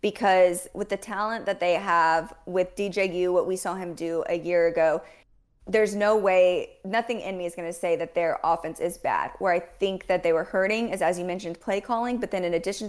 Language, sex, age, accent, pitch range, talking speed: English, female, 20-39, American, 175-205 Hz, 230 wpm